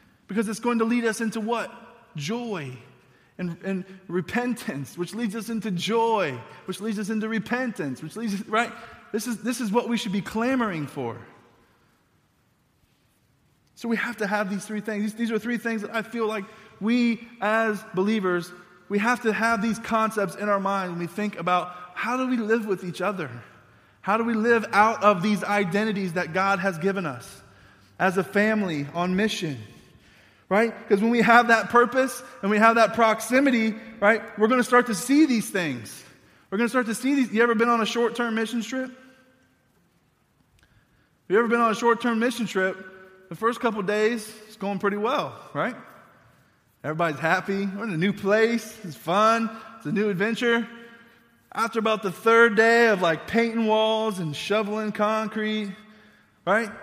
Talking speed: 180 wpm